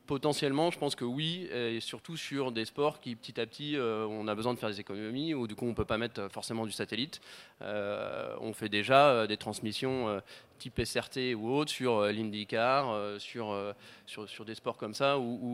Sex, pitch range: male, 105-130 Hz